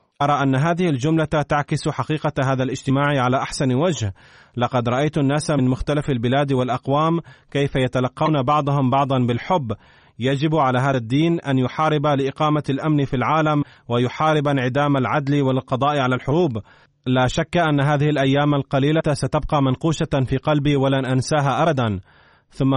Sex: male